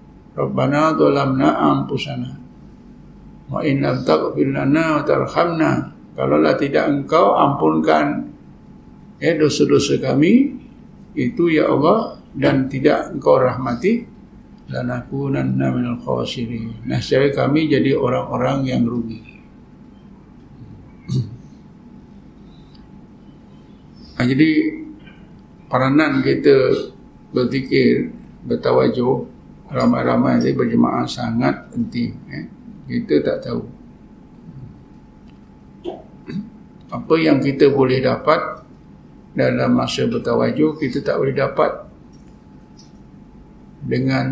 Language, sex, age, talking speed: Malay, male, 50-69, 80 wpm